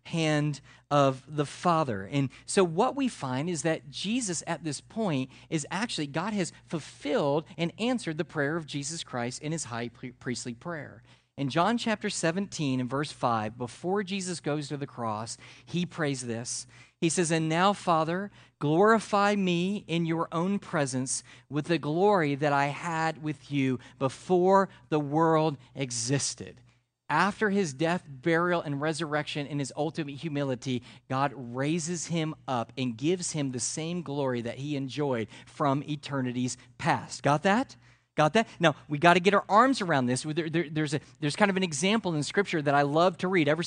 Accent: American